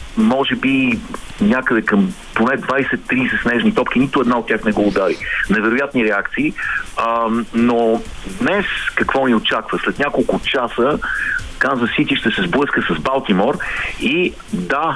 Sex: male